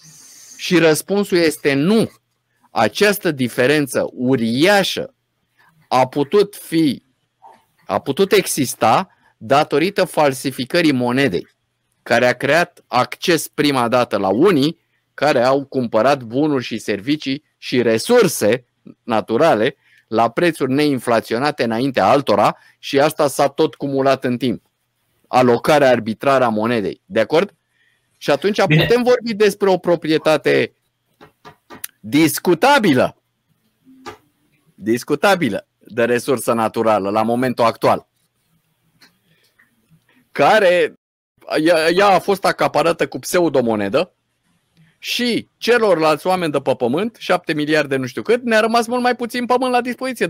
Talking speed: 105 wpm